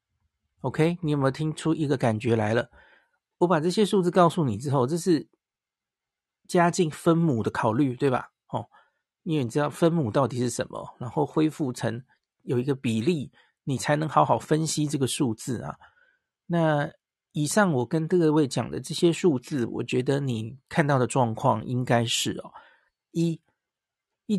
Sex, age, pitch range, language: male, 50-69, 125-165 Hz, Chinese